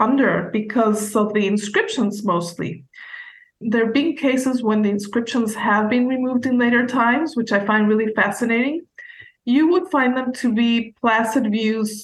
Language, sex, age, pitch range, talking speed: English, female, 20-39, 205-245 Hz, 160 wpm